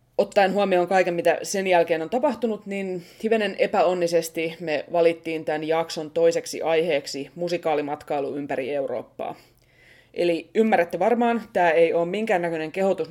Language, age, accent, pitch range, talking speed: Finnish, 20-39, native, 155-190 Hz, 130 wpm